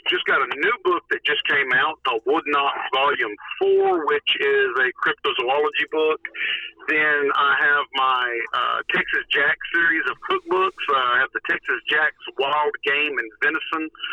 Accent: American